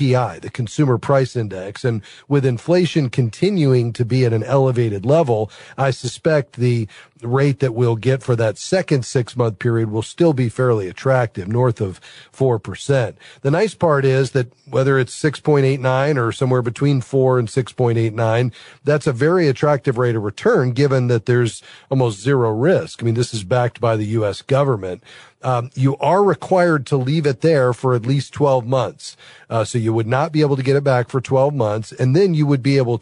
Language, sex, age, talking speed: English, male, 40-59, 185 wpm